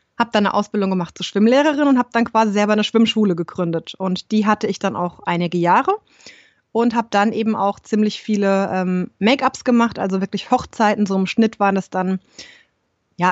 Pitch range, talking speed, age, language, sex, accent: 195-230 Hz, 195 wpm, 20-39, German, female, German